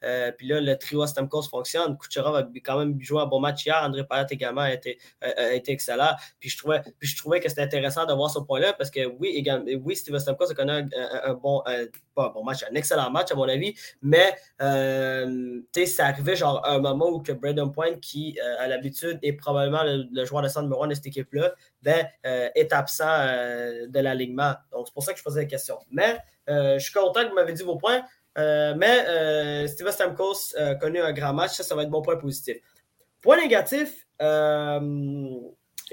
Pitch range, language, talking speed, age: 135-170 Hz, French, 220 wpm, 20-39